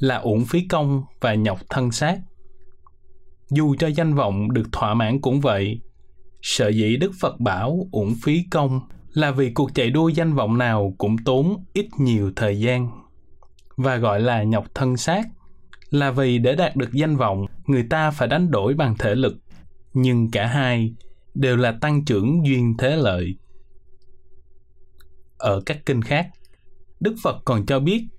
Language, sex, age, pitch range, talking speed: Vietnamese, male, 20-39, 105-145 Hz, 170 wpm